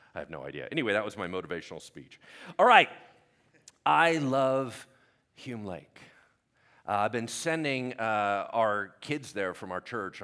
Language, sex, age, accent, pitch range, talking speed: English, male, 40-59, American, 105-160 Hz, 160 wpm